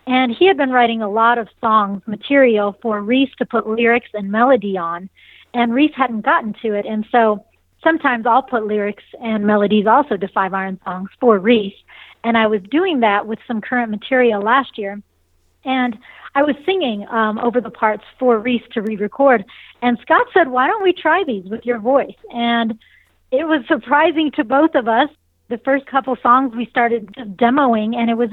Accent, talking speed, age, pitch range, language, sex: American, 195 wpm, 40-59, 220-265 Hz, English, female